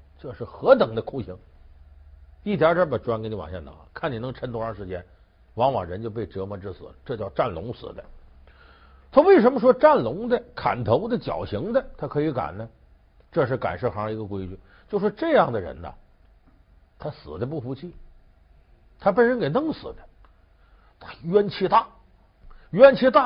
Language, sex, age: Chinese, male, 60-79